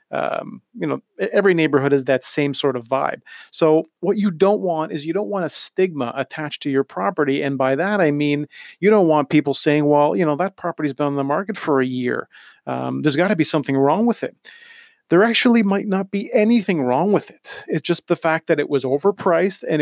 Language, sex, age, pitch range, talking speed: English, male, 40-59, 140-185 Hz, 225 wpm